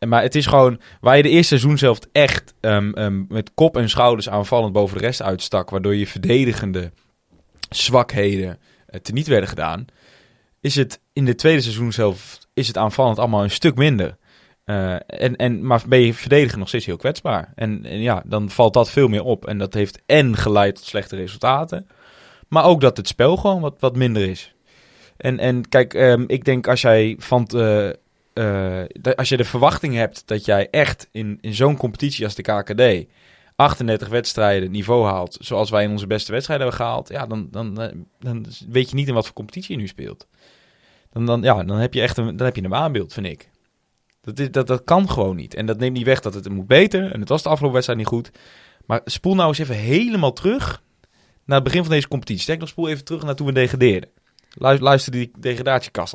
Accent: Dutch